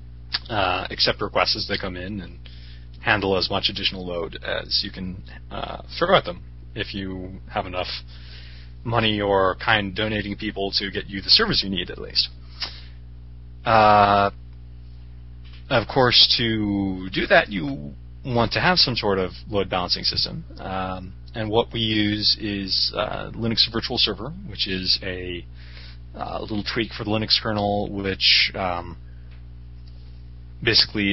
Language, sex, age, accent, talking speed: English, male, 30-49, American, 150 wpm